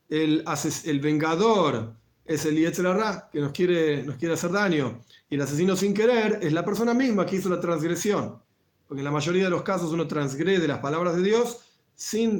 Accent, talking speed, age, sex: Argentinian, 190 wpm, 40-59, male